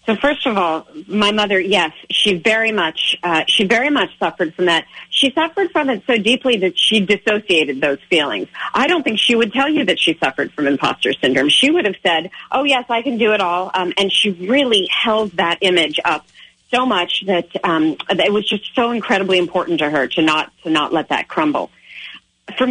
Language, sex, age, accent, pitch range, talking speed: English, female, 40-59, American, 175-235 Hz, 210 wpm